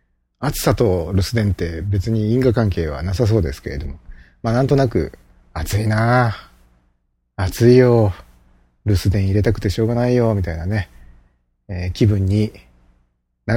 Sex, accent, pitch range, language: male, native, 80-130 Hz, Japanese